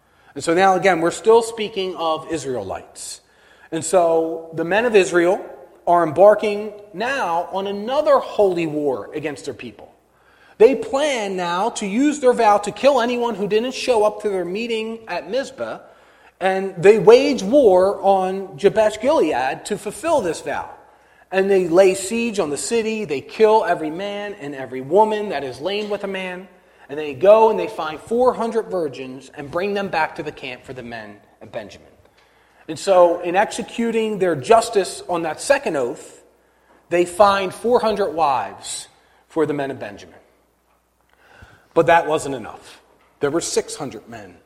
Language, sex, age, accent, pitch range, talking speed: English, male, 40-59, American, 170-225 Hz, 165 wpm